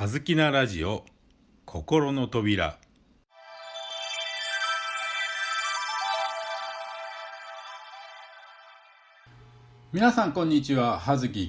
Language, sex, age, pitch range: Japanese, male, 50-69, 120-195 Hz